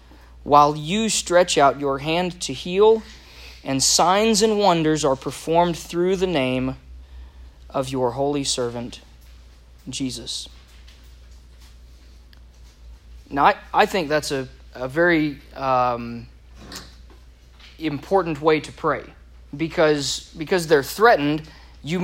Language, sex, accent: English, male, American